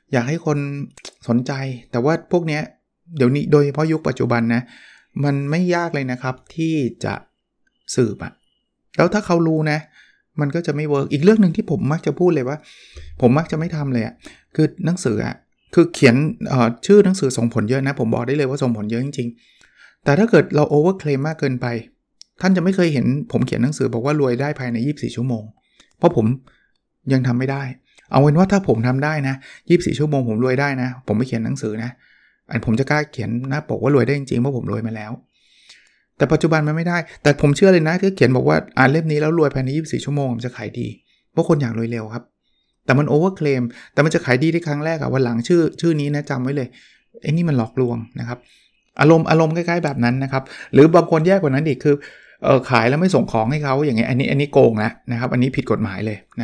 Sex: male